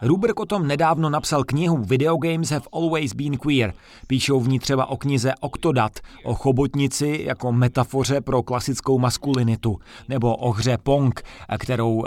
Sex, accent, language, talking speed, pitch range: male, native, Czech, 155 wpm, 125-155 Hz